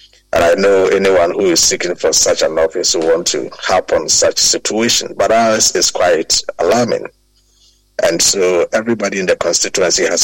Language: English